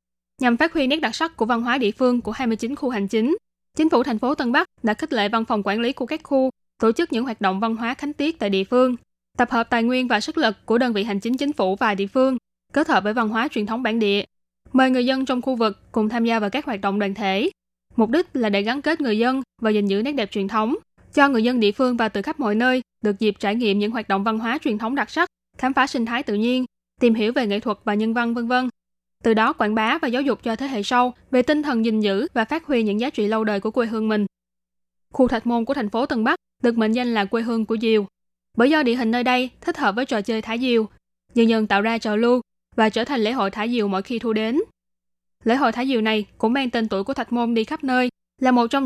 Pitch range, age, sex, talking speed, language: 210-255 Hz, 10-29, female, 280 wpm, Vietnamese